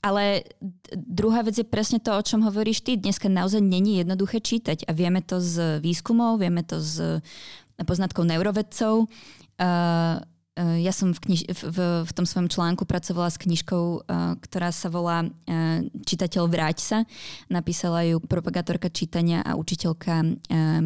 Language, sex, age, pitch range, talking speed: Czech, female, 20-39, 170-190 Hz, 155 wpm